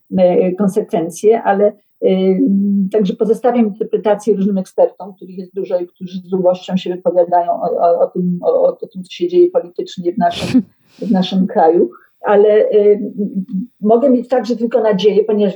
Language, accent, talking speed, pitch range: Polish, native, 140 wpm, 185-215 Hz